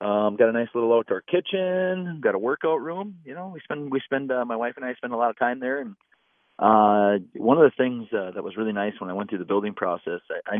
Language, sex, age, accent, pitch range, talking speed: English, male, 30-49, American, 100-125 Hz, 270 wpm